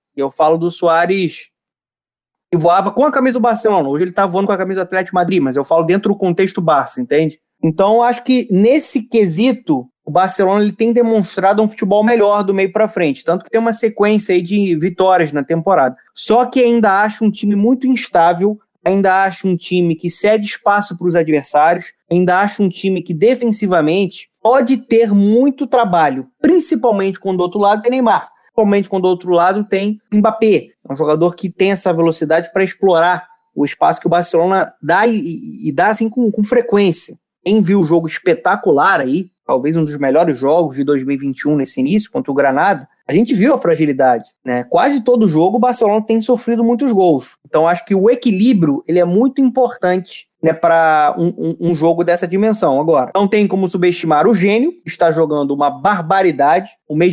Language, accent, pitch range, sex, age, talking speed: Portuguese, Brazilian, 160-215 Hz, male, 20-39, 195 wpm